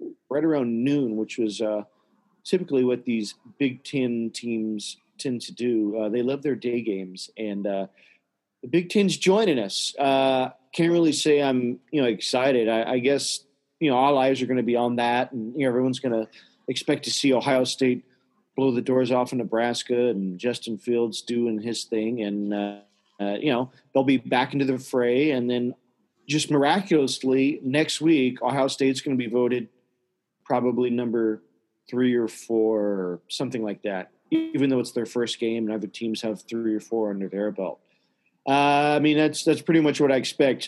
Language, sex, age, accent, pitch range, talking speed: English, male, 40-59, American, 115-135 Hz, 190 wpm